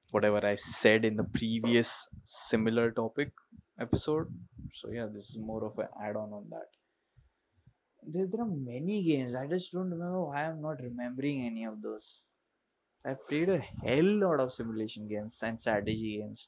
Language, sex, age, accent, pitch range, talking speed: English, male, 20-39, Indian, 105-130 Hz, 170 wpm